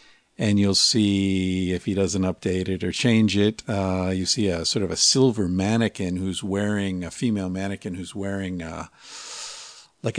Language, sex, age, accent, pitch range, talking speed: English, male, 50-69, American, 95-115 Hz, 170 wpm